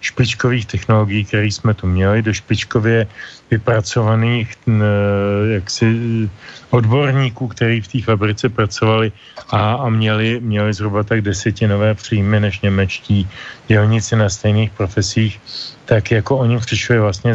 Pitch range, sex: 105-120 Hz, male